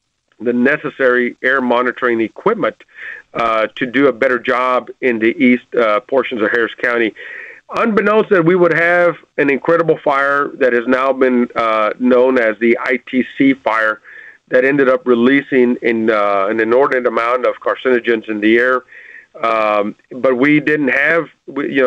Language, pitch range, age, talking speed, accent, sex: English, 125-155 Hz, 50-69, 155 wpm, American, male